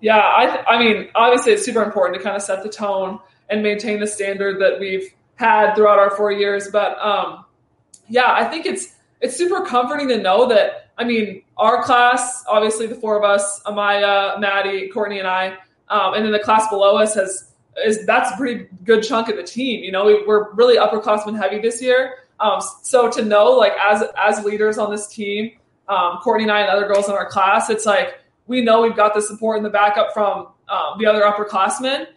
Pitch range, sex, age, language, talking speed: 200-230 Hz, female, 20-39, English, 215 wpm